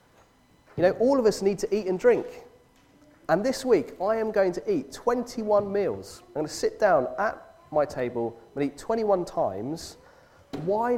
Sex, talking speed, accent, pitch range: male, 180 wpm, British, 130-190 Hz